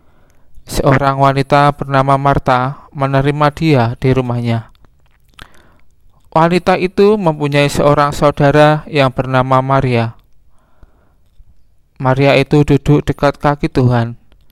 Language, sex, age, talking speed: Indonesian, male, 20-39, 90 wpm